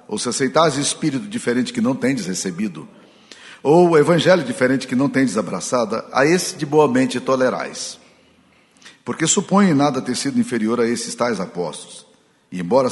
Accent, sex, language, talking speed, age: Brazilian, male, Portuguese, 160 wpm, 60-79